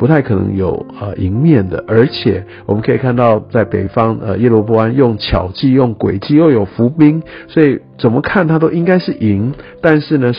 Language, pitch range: Chinese, 100-120 Hz